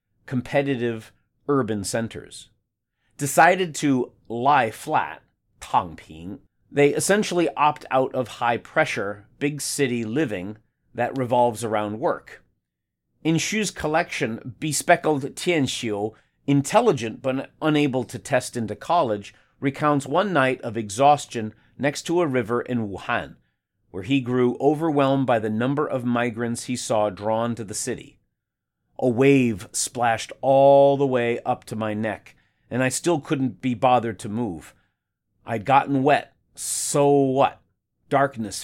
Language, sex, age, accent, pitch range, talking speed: English, male, 40-59, American, 115-145 Hz, 130 wpm